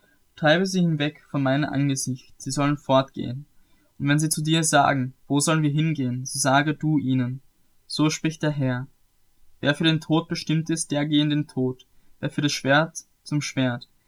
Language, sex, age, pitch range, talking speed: German, male, 10-29, 135-155 Hz, 185 wpm